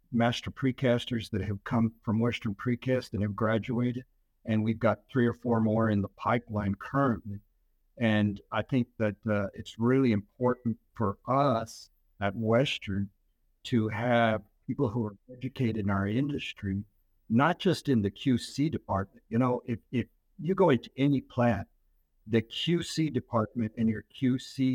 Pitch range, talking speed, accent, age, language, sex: 105-125 Hz, 155 wpm, American, 60-79, English, male